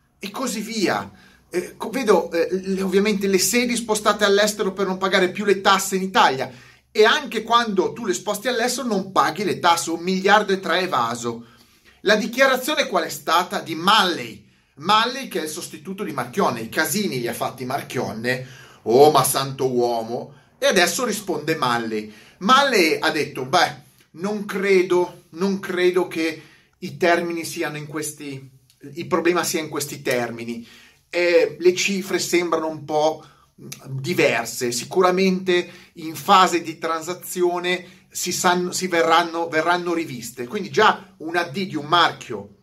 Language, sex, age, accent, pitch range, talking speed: Italian, male, 30-49, native, 155-200 Hz, 150 wpm